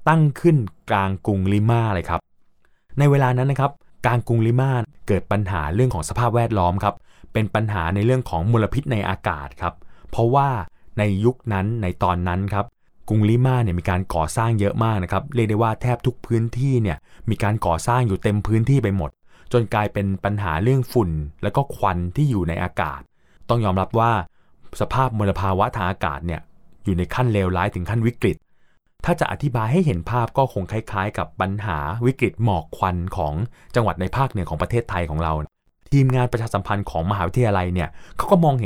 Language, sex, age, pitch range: Thai, male, 20-39, 90-120 Hz